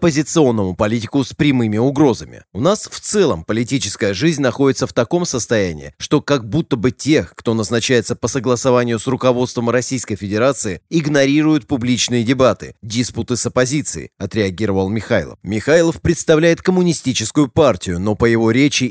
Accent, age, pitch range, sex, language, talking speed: native, 30-49, 110-140 Hz, male, Russian, 140 wpm